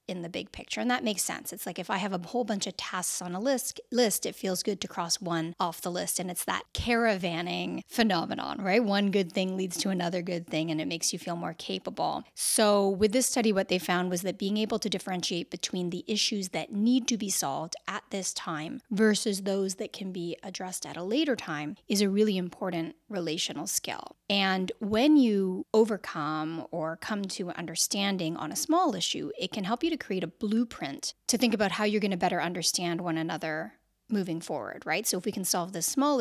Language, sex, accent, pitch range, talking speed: English, female, American, 175-220 Hz, 220 wpm